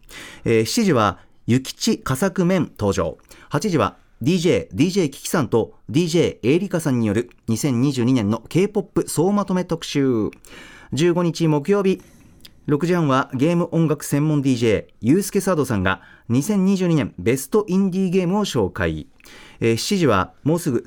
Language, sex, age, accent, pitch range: Japanese, male, 40-59, native, 120-180 Hz